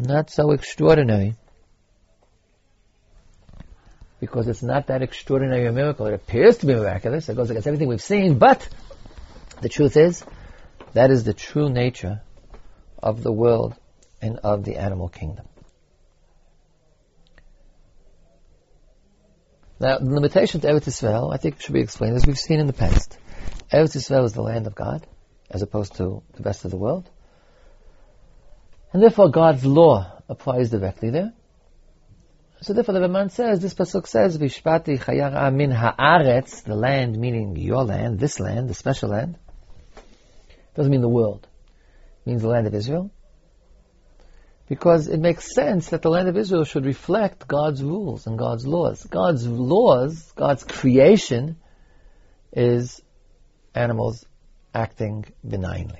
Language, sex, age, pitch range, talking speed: English, male, 50-69, 105-150 Hz, 140 wpm